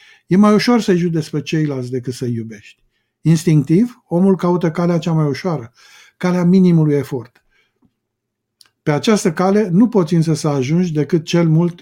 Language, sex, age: Romanian, male, 50-69